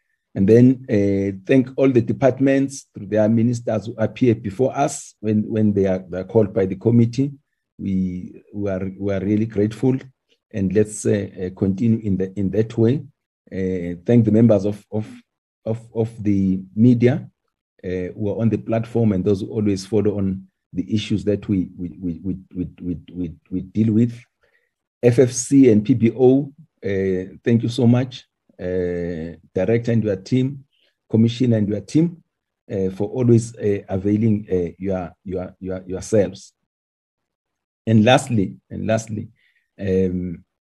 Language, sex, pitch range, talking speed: English, male, 95-115 Hz, 160 wpm